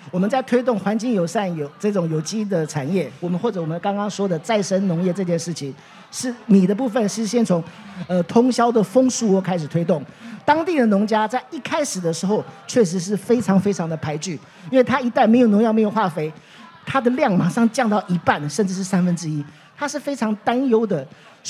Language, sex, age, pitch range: Chinese, male, 40-59, 180-240 Hz